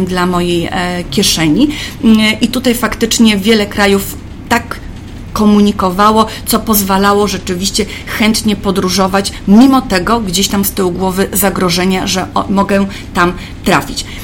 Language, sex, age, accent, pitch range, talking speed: Polish, female, 30-49, native, 185-220 Hz, 115 wpm